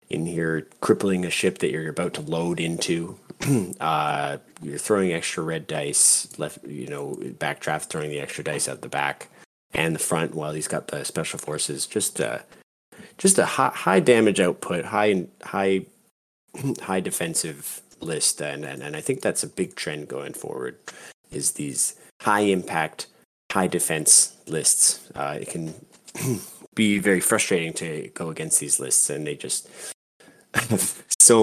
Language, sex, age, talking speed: English, male, 30-49, 160 wpm